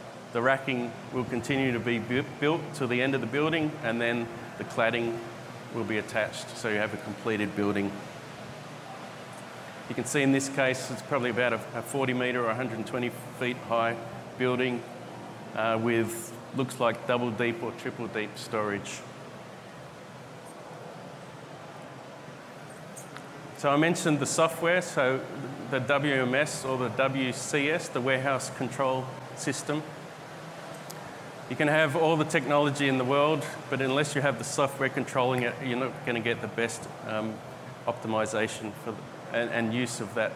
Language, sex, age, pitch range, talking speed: English, male, 30-49, 120-145 Hz, 145 wpm